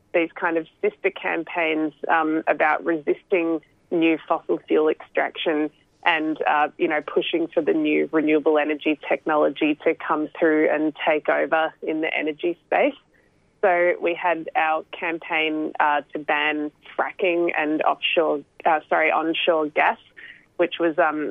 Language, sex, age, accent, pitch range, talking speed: English, female, 20-39, Australian, 155-175 Hz, 145 wpm